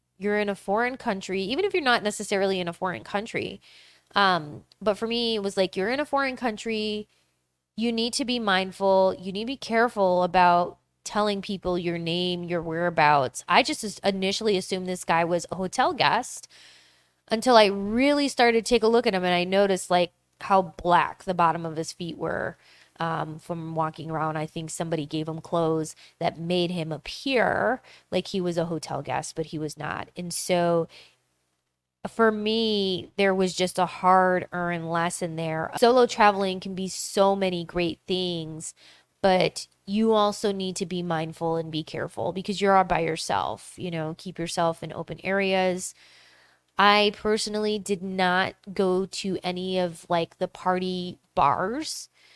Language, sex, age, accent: English, female, 20-39, American